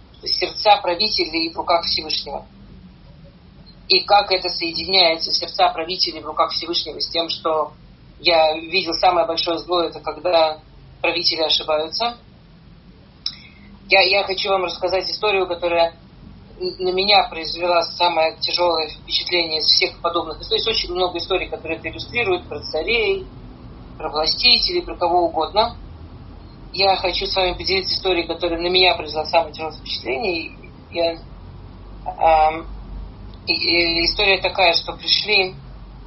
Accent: native